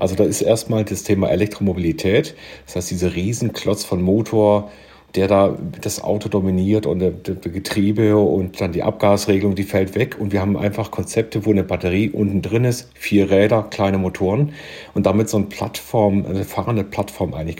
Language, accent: German, German